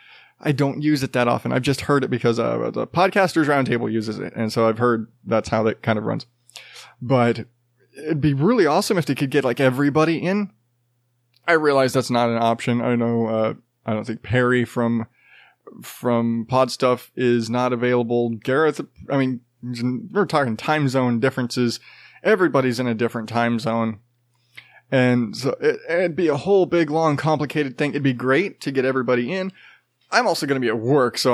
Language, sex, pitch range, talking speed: English, male, 120-145 Hz, 185 wpm